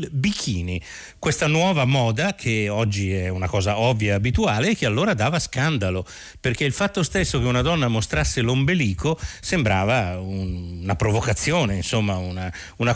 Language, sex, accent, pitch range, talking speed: Italian, male, native, 100-140 Hz, 155 wpm